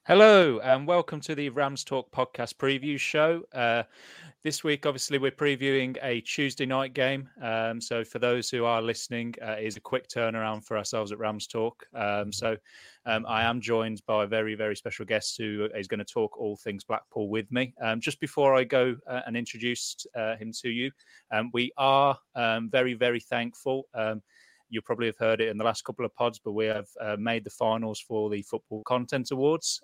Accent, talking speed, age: British, 205 wpm, 30-49